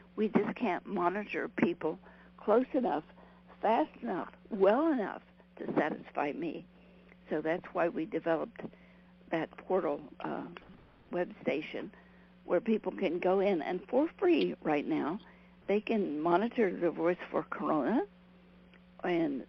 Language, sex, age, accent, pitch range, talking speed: English, female, 60-79, American, 180-220 Hz, 130 wpm